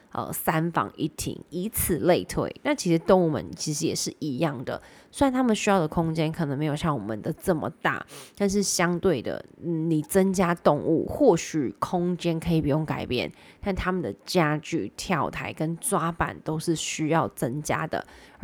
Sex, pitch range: female, 155-185 Hz